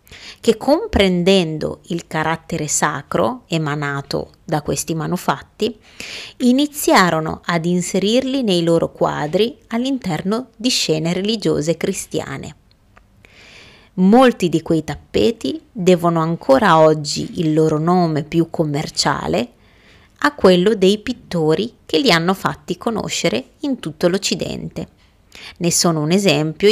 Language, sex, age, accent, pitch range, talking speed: Italian, female, 30-49, native, 160-220 Hz, 110 wpm